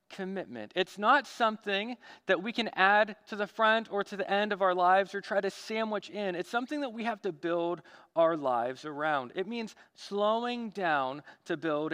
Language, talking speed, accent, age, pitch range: English, 195 wpm, American, 40-59, 170-230 Hz